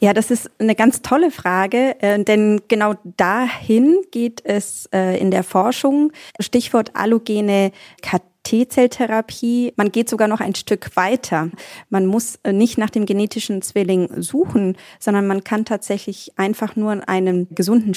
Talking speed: 135 wpm